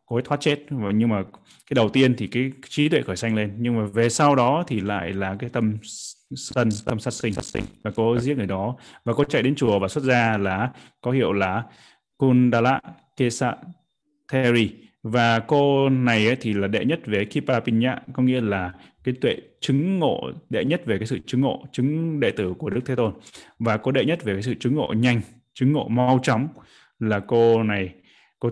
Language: Vietnamese